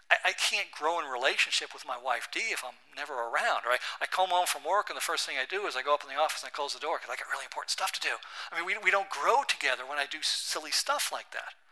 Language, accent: English, American